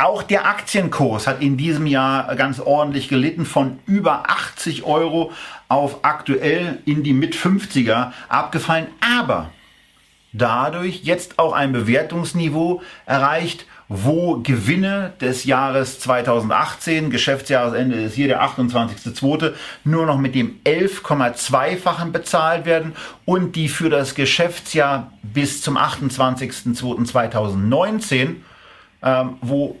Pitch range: 125-165 Hz